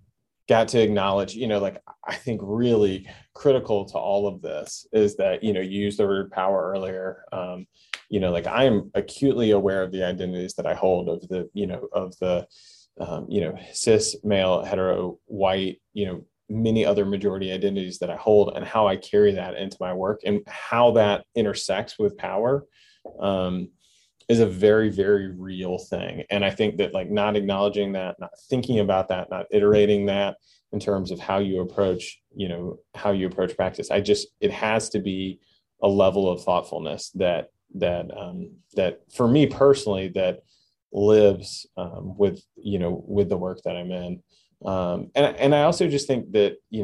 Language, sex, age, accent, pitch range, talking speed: English, male, 20-39, American, 95-110 Hz, 185 wpm